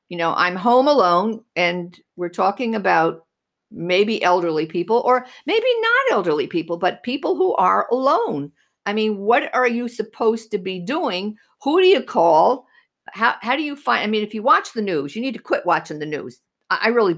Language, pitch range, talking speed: English, 170-245 Hz, 200 wpm